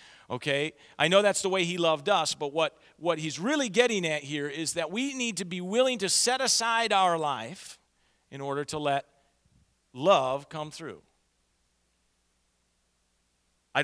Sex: male